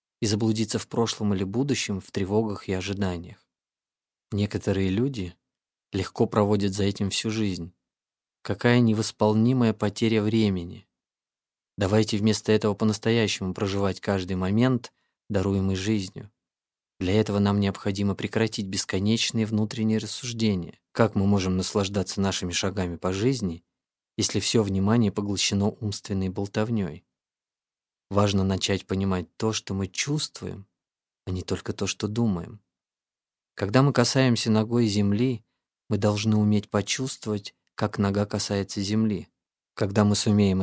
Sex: male